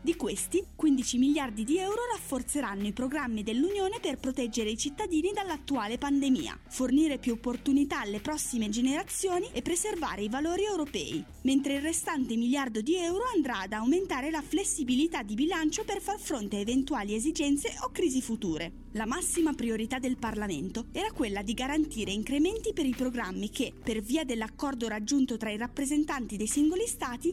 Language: Italian